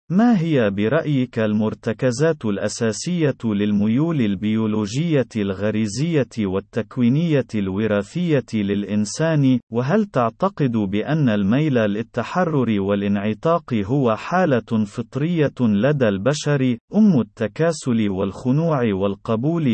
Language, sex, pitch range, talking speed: Arabic, male, 110-150 Hz, 80 wpm